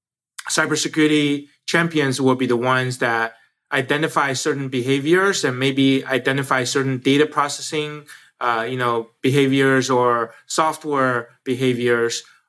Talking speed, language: 110 wpm, English